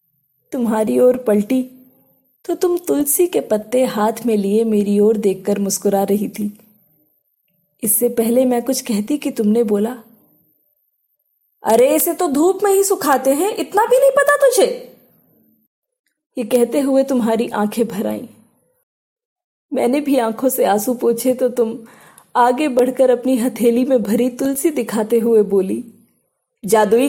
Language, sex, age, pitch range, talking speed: Hindi, female, 20-39, 225-335 Hz, 140 wpm